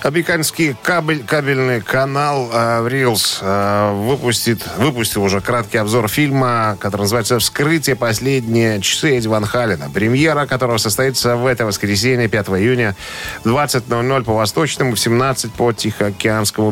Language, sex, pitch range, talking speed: Russian, male, 100-130 Hz, 120 wpm